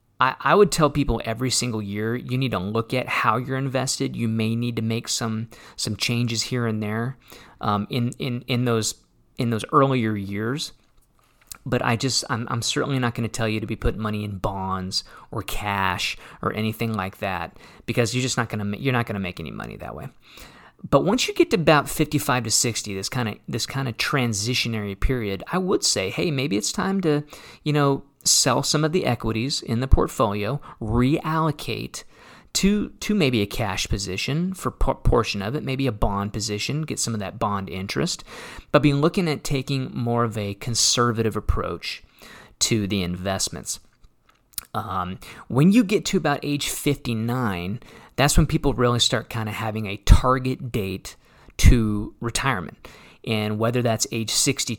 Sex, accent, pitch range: male, American, 110-135 Hz